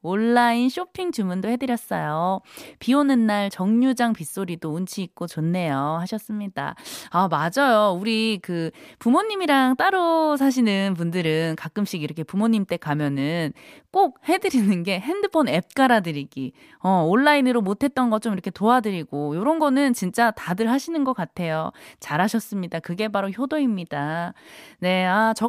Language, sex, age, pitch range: Korean, female, 20-39, 175-255 Hz